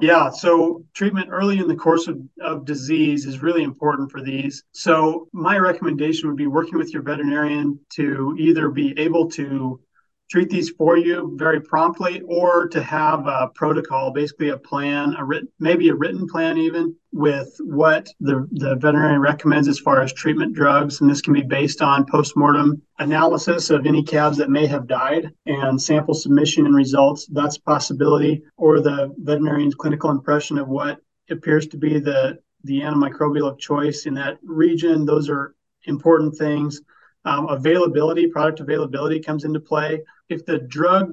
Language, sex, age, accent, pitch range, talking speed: English, male, 30-49, American, 145-160 Hz, 170 wpm